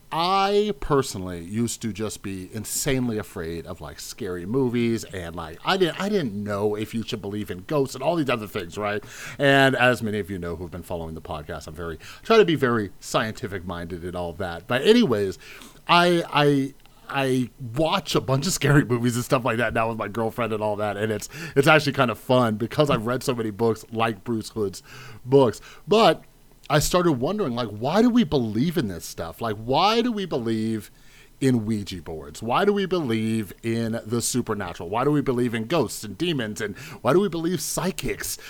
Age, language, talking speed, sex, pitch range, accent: 30-49, English, 205 wpm, male, 105-140 Hz, American